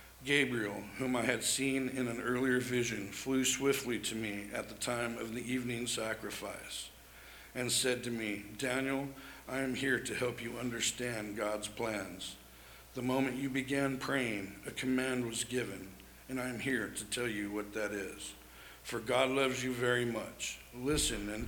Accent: American